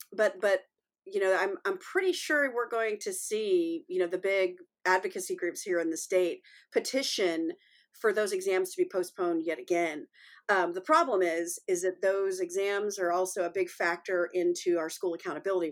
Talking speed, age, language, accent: 185 wpm, 40-59, English, American